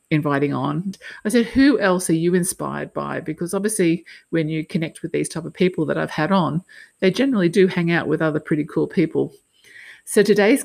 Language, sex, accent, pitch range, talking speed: English, female, Australian, 150-180 Hz, 205 wpm